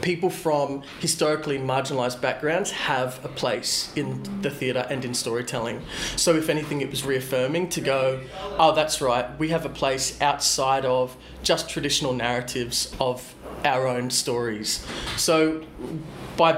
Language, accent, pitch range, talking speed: English, Australian, 130-155 Hz, 145 wpm